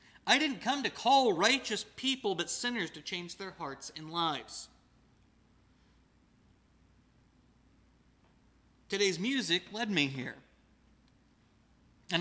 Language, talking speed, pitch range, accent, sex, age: English, 105 wpm, 155-210 Hz, American, male, 40-59